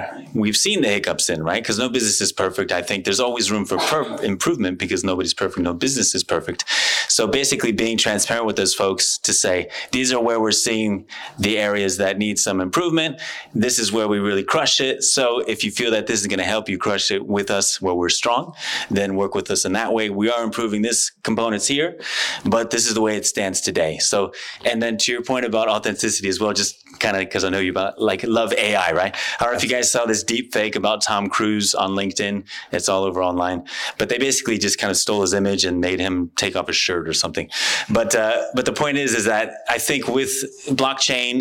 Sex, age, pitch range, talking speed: male, 20-39, 100-115 Hz, 235 wpm